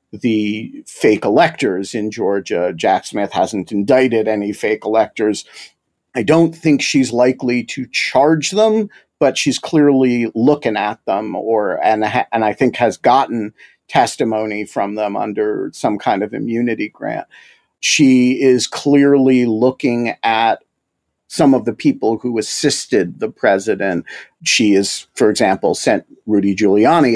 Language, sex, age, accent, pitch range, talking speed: English, male, 50-69, American, 110-145 Hz, 135 wpm